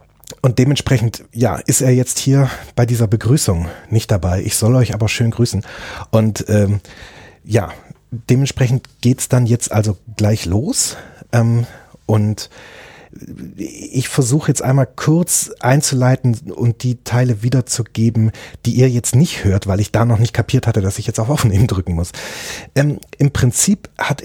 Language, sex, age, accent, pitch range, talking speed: German, male, 30-49, German, 105-130 Hz, 160 wpm